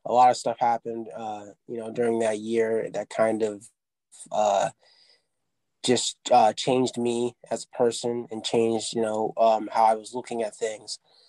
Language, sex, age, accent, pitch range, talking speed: English, male, 20-39, American, 110-125 Hz, 175 wpm